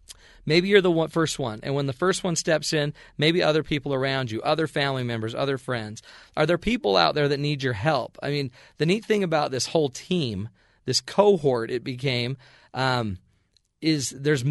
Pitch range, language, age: 120-155 Hz, English, 40-59